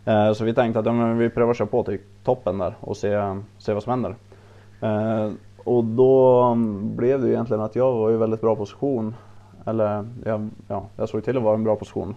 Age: 20-39